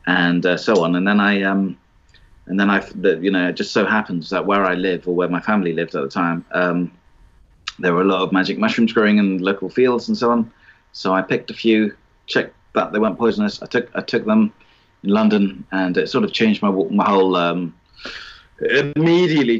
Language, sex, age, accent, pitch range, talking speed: English, male, 30-49, British, 90-115 Hz, 215 wpm